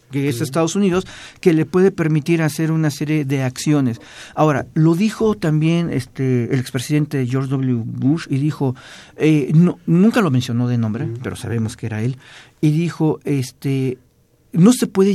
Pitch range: 130-170 Hz